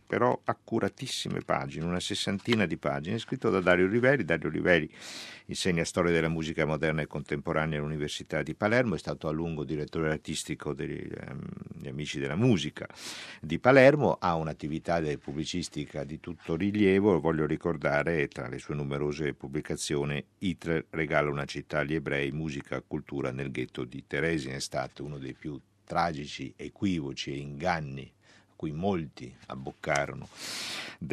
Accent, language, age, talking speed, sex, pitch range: native, Italian, 50-69, 145 wpm, male, 70-90 Hz